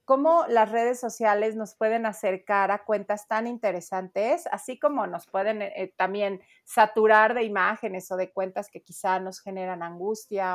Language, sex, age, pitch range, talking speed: Spanish, female, 40-59, 190-235 Hz, 160 wpm